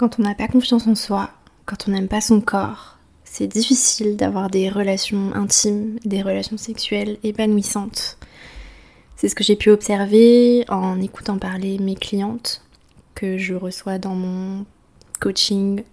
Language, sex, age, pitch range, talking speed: French, female, 20-39, 190-210 Hz, 150 wpm